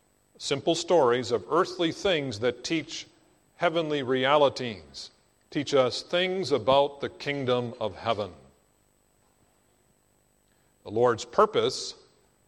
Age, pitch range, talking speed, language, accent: 50-69, 125-180 Hz, 95 wpm, English, American